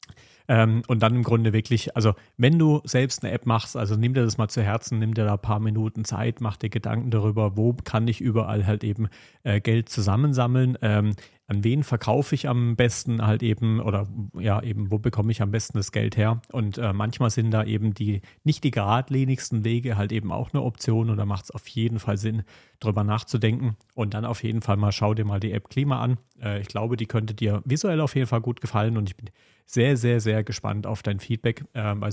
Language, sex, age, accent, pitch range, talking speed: German, male, 40-59, German, 105-120 Hz, 230 wpm